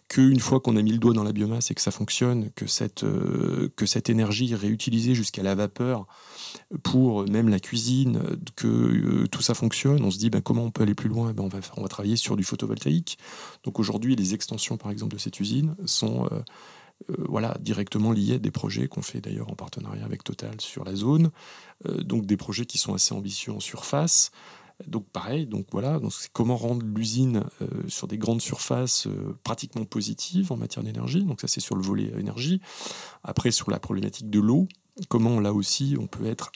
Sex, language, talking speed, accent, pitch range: male, French, 210 wpm, French, 105-130 Hz